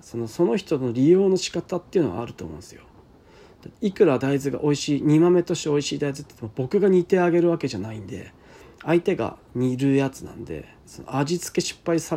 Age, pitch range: 40-59, 120-160 Hz